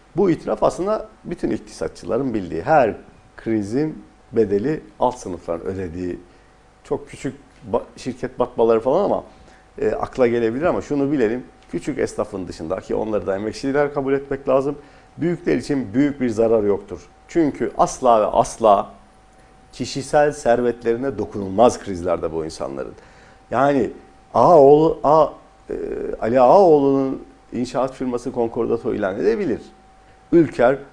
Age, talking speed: 50-69, 115 wpm